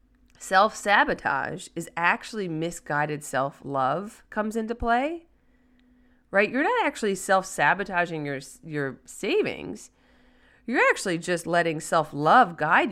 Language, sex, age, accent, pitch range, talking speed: English, female, 30-49, American, 150-245 Hz, 100 wpm